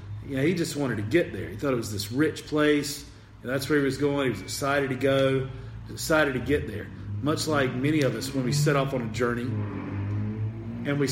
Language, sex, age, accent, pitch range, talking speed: English, male, 40-59, American, 105-135 Hz, 230 wpm